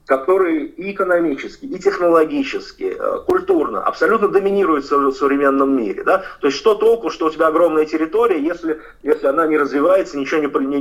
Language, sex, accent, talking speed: Russian, male, native, 145 wpm